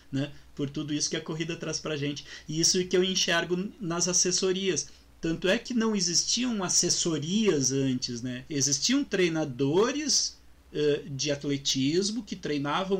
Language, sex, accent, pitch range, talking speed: Portuguese, male, Brazilian, 145-190 Hz, 150 wpm